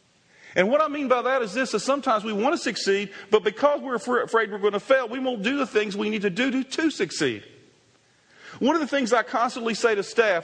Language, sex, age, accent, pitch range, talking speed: English, male, 40-59, American, 190-240 Hz, 245 wpm